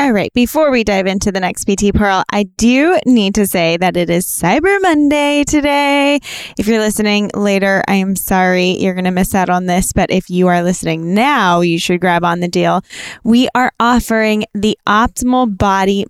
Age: 10-29